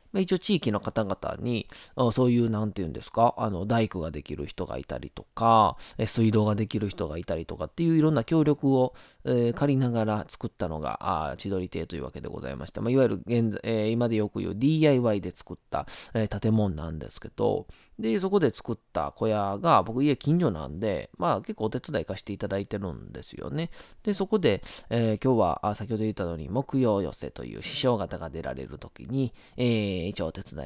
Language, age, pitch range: Japanese, 20-39, 90-130 Hz